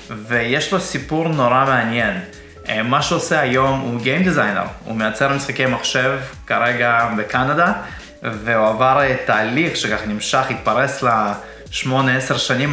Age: 20-39